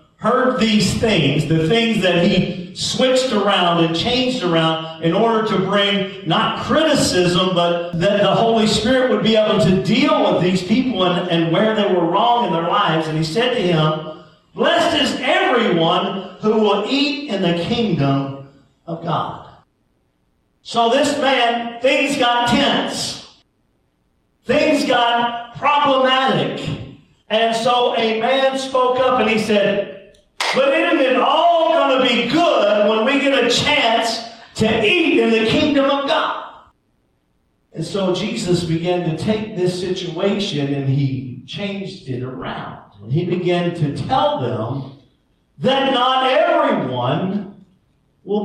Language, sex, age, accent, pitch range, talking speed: English, male, 40-59, American, 180-255 Hz, 145 wpm